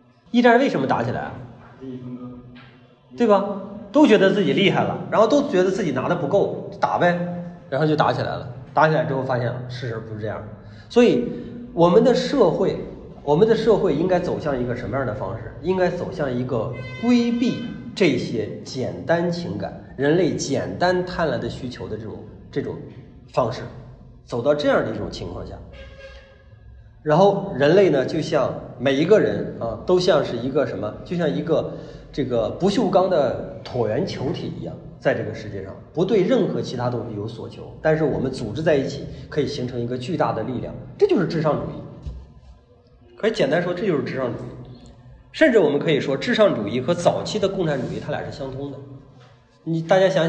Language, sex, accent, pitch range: Chinese, male, native, 120-180 Hz